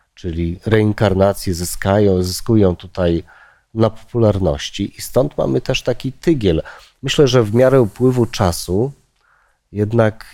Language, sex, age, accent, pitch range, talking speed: Polish, male, 40-59, native, 95-120 Hz, 110 wpm